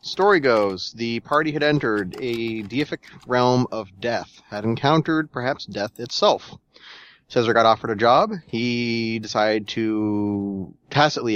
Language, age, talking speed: English, 30-49, 130 wpm